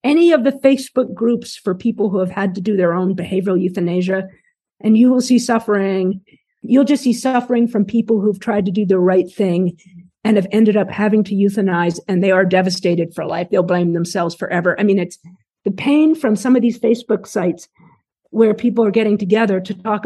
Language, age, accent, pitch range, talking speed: English, 50-69, American, 190-235 Hz, 205 wpm